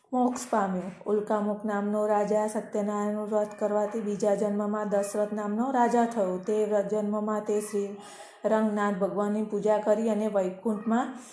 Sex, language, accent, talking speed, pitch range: female, Gujarati, native, 125 wpm, 205-220 Hz